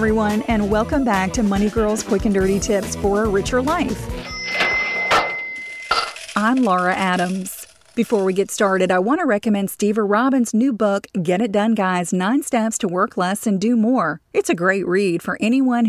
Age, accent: 40-59, American